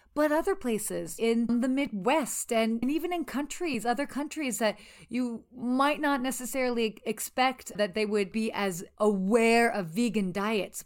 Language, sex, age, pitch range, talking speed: English, female, 30-49, 205-260 Hz, 150 wpm